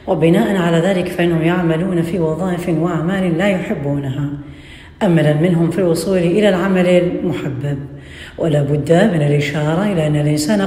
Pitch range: 145-185 Hz